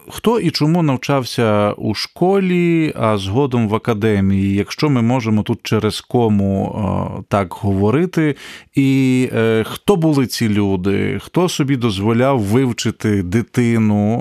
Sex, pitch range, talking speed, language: male, 105-145 Hz, 120 wpm, Ukrainian